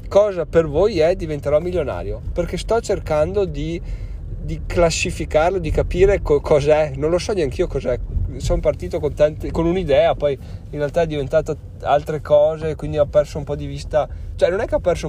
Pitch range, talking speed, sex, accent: 100-155 Hz, 185 wpm, male, native